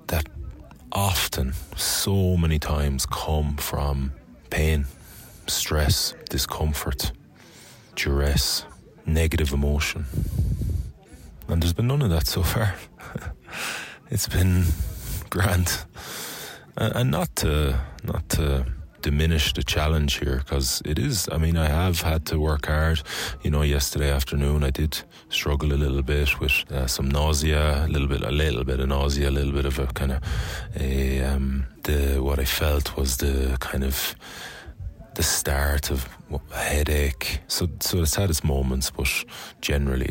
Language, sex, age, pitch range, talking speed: English, male, 30-49, 70-80 Hz, 140 wpm